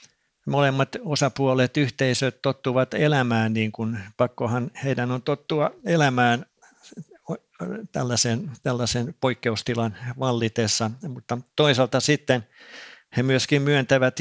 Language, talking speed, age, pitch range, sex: Finnish, 95 wpm, 50-69, 110-130 Hz, male